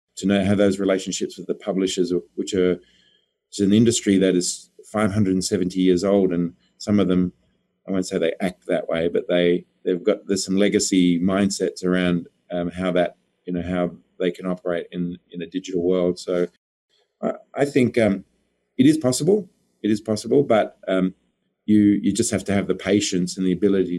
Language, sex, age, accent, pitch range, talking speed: English, male, 30-49, Australian, 90-105 Hz, 195 wpm